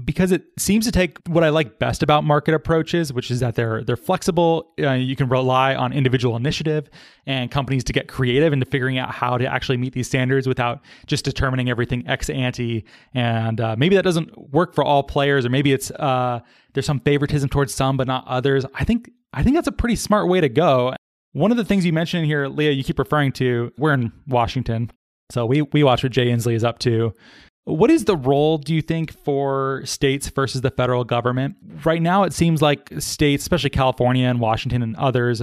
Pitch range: 125-155 Hz